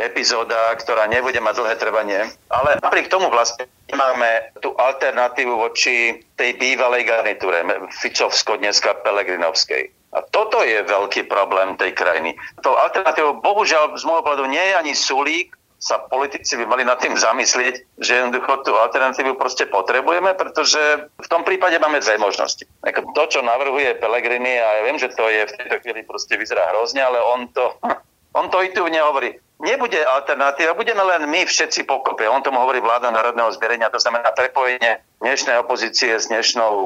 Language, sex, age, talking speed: Slovak, male, 50-69, 165 wpm